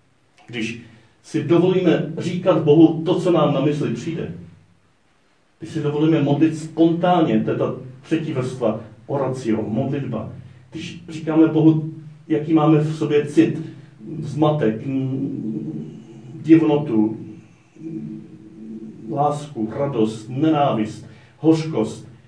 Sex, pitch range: male, 110-155 Hz